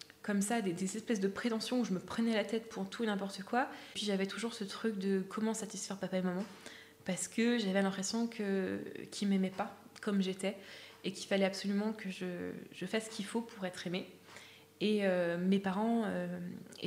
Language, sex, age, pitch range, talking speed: French, female, 20-39, 185-215 Hz, 210 wpm